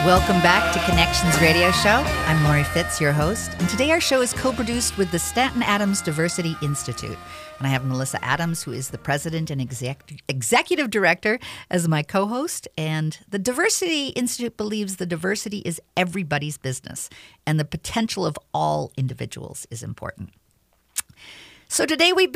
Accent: American